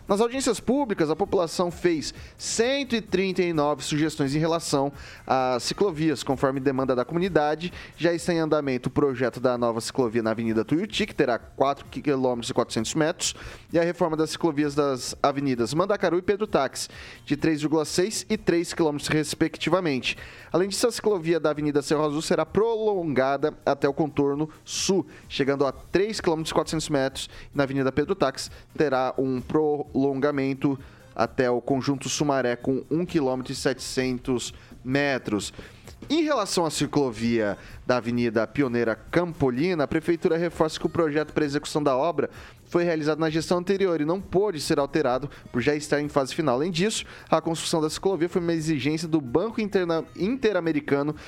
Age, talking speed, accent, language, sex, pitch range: 20-39, 155 wpm, Brazilian, Portuguese, male, 130-170 Hz